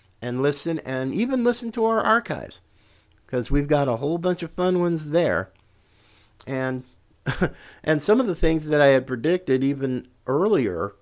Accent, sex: American, male